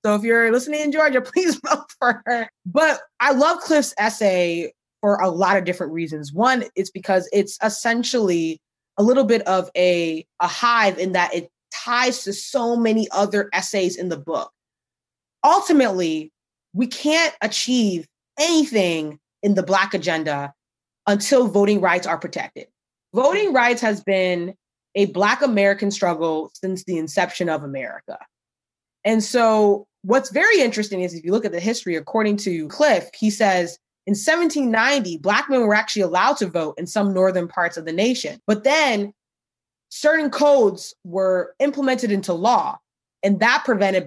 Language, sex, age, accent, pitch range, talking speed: English, female, 20-39, American, 180-245 Hz, 160 wpm